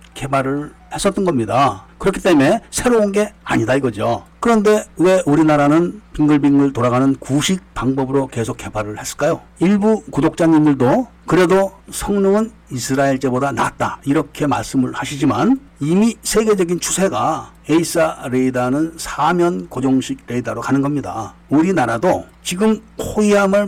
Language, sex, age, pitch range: Korean, male, 60-79, 135-190 Hz